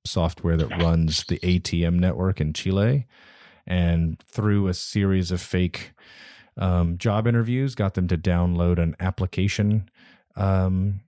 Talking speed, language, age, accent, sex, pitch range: 130 wpm, English, 30-49, American, male, 85-105 Hz